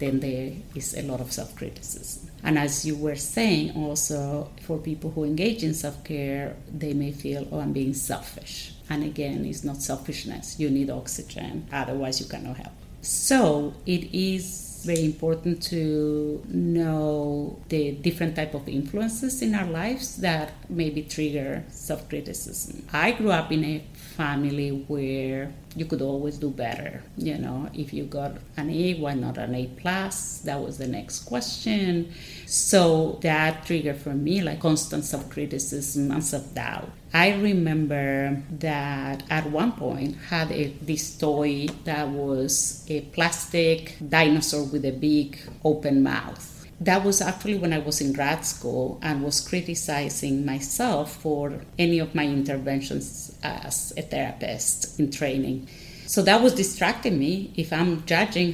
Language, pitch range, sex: English, 140-165 Hz, female